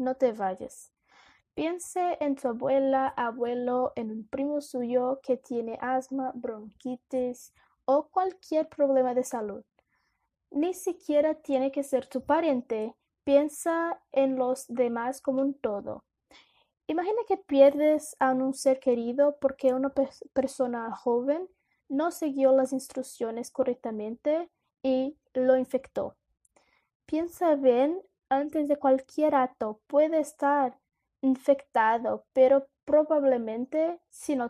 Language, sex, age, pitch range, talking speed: Portuguese, female, 20-39, 250-285 Hz, 120 wpm